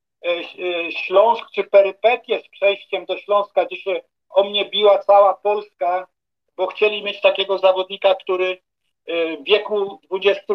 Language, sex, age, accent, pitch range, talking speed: Polish, male, 50-69, native, 180-215 Hz, 130 wpm